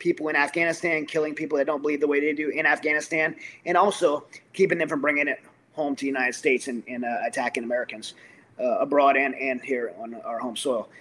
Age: 30-49